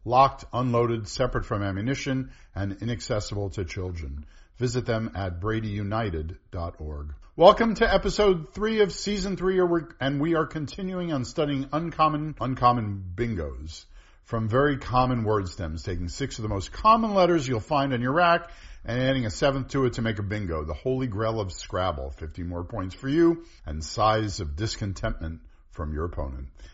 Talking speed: 165 wpm